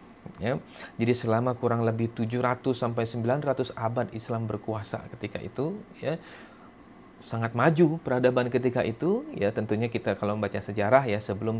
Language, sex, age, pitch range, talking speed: Indonesian, male, 30-49, 110-155 Hz, 140 wpm